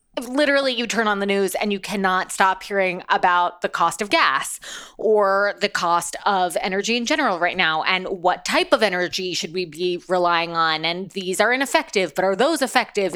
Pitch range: 175-220 Hz